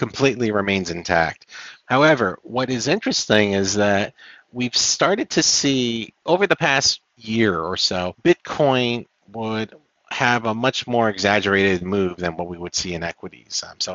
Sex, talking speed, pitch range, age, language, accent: male, 155 wpm, 90-130 Hz, 40-59, English, American